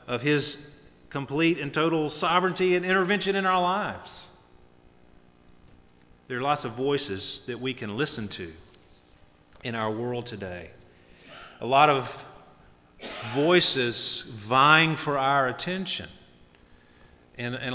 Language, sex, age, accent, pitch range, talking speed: English, male, 40-59, American, 95-135 Hz, 120 wpm